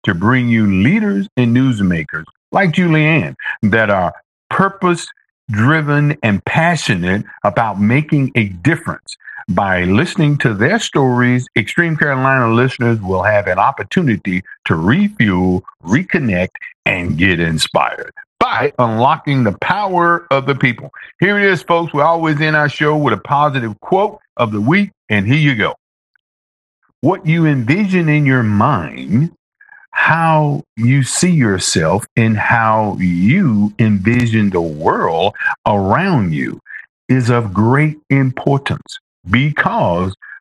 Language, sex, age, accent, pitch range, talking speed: English, male, 50-69, American, 110-155 Hz, 125 wpm